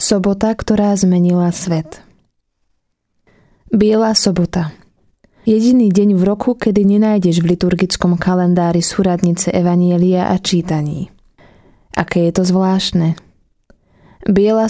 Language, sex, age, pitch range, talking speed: Slovak, female, 20-39, 175-200 Hz, 100 wpm